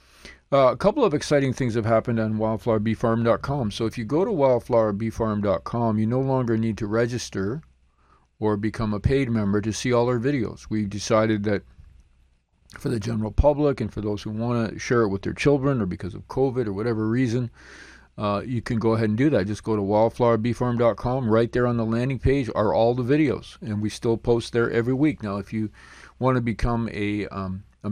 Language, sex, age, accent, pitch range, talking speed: English, male, 50-69, American, 105-125 Hz, 205 wpm